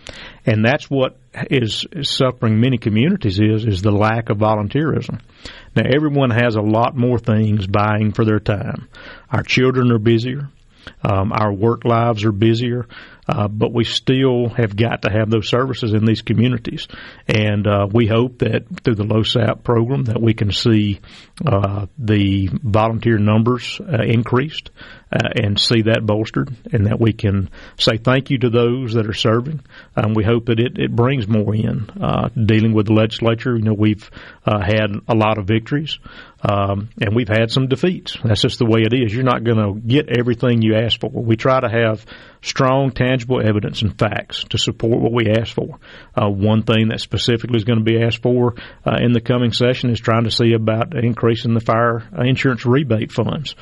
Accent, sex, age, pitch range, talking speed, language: American, male, 50-69, 110-125 Hz, 190 wpm, English